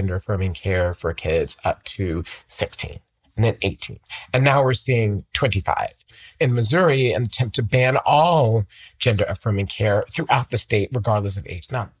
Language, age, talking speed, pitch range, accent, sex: English, 30-49, 155 wpm, 100-130 Hz, American, male